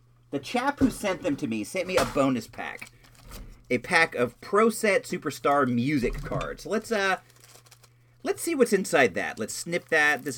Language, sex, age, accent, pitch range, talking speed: English, male, 40-59, American, 120-200 Hz, 180 wpm